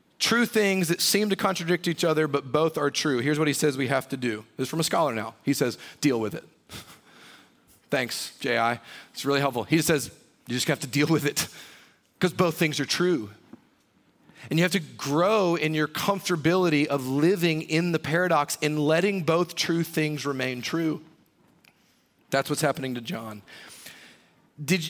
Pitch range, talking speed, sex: 135-170 Hz, 185 wpm, male